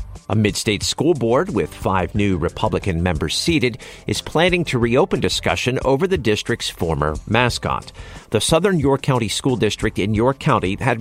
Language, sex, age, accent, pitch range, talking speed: English, male, 50-69, American, 95-135 Hz, 165 wpm